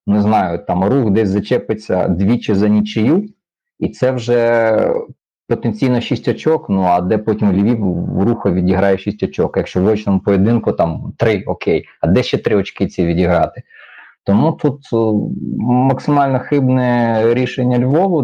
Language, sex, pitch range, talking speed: Ukrainian, male, 100-120 Hz, 145 wpm